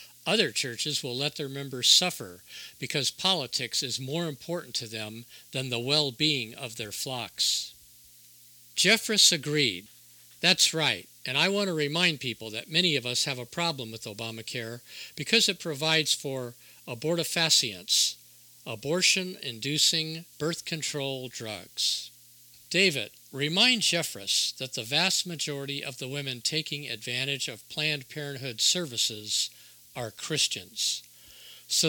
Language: English